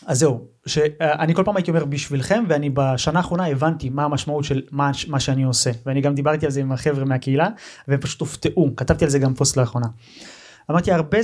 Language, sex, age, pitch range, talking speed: Hebrew, male, 30-49, 135-180 Hz, 210 wpm